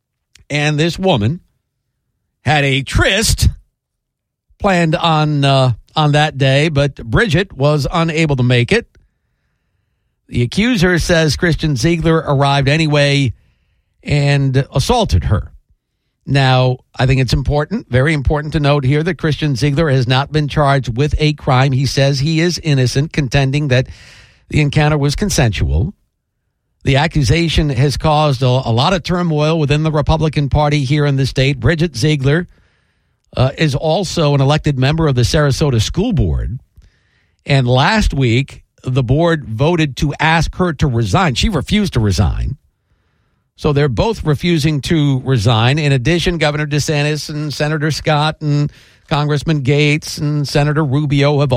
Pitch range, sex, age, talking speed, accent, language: 130-155 Hz, male, 50-69, 145 wpm, American, English